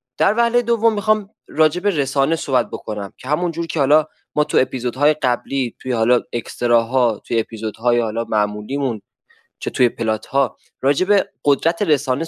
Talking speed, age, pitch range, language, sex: 140 wpm, 20-39, 125-170 Hz, Persian, male